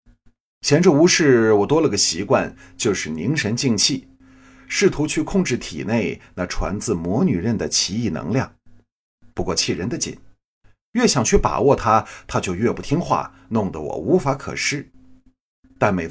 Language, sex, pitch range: Chinese, male, 80-130 Hz